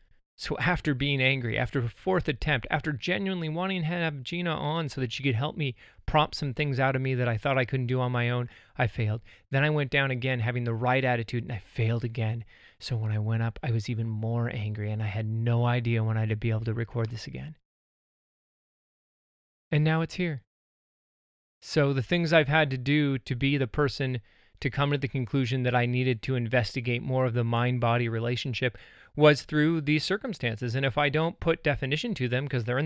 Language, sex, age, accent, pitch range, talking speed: English, male, 30-49, American, 120-145 Hz, 220 wpm